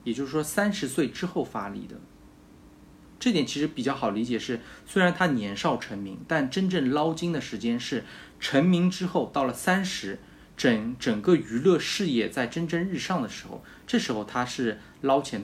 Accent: native